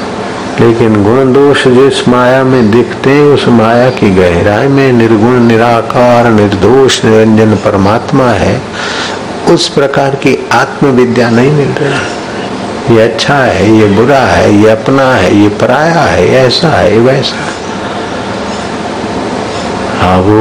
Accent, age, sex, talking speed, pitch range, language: native, 60-79, male, 120 wpm, 110-130 Hz, Hindi